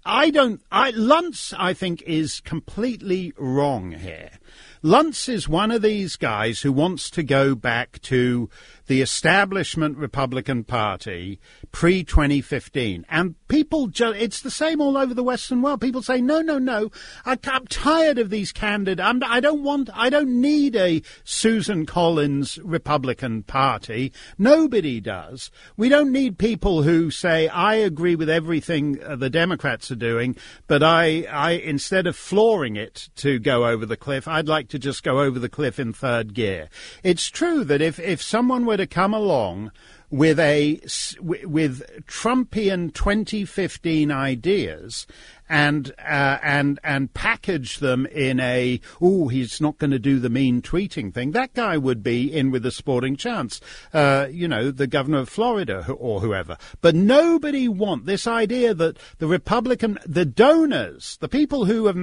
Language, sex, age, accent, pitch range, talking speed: English, male, 50-69, British, 135-215 Hz, 160 wpm